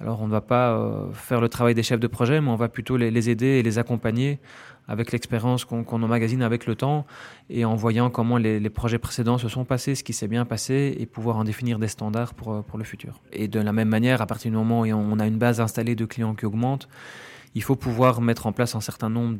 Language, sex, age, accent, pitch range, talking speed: French, male, 20-39, French, 110-125 Hz, 255 wpm